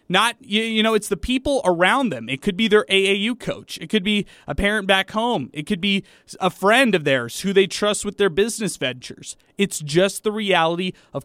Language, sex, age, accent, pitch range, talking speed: English, male, 30-49, American, 160-205 Hz, 215 wpm